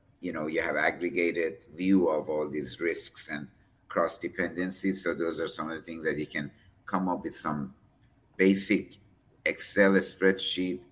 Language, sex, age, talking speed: English, male, 50-69, 165 wpm